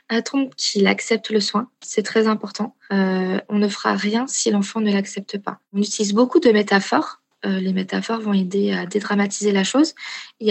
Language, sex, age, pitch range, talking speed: English, female, 20-39, 190-225 Hz, 195 wpm